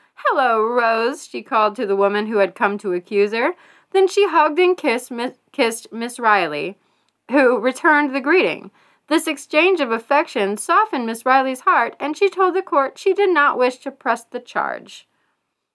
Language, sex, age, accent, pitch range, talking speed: English, female, 30-49, American, 220-345 Hz, 175 wpm